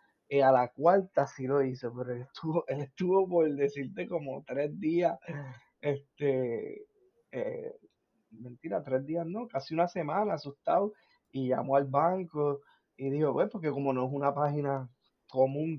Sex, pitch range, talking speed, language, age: male, 130-165 Hz, 160 wpm, Spanish, 20-39